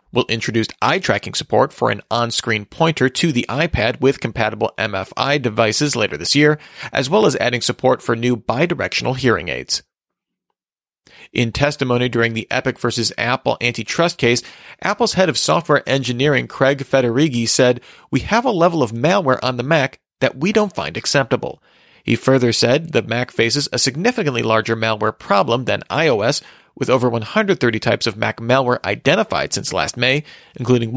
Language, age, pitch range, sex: English, 40-59, 115-150 Hz, male